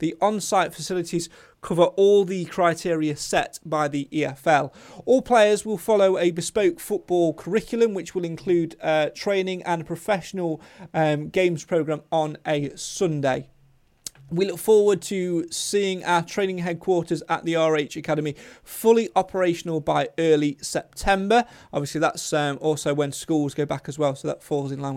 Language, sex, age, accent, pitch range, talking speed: English, male, 30-49, British, 155-195 Hz, 155 wpm